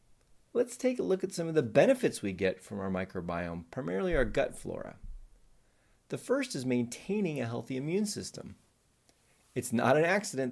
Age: 30-49